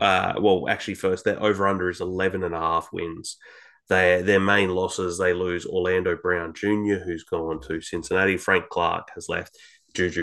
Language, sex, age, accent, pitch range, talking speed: English, male, 20-39, Australian, 85-100 Hz, 160 wpm